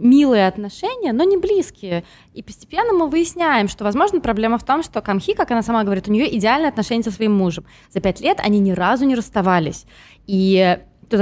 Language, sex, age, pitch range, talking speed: Russian, female, 20-39, 185-255 Hz, 200 wpm